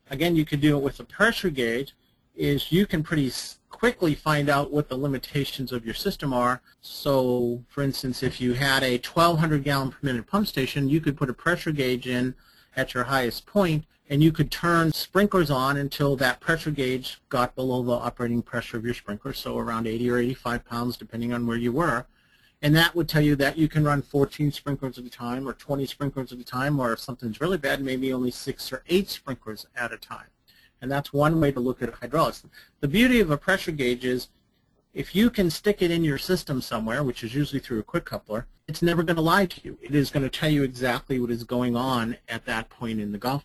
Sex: male